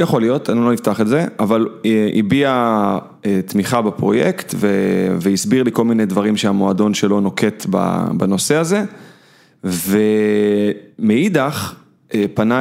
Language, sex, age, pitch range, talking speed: Hebrew, male, 30-49, 105-125 Hz, 110 wpm